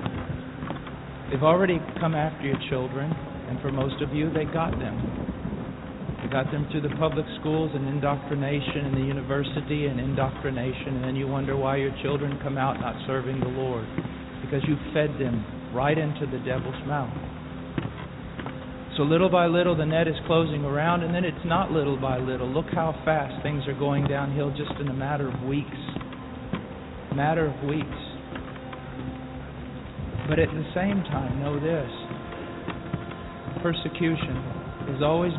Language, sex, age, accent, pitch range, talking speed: English, male, 50-69, American, 135-155 Hz, 155 wpm